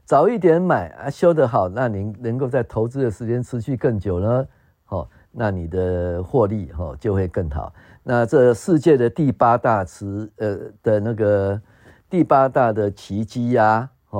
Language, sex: Chinese, male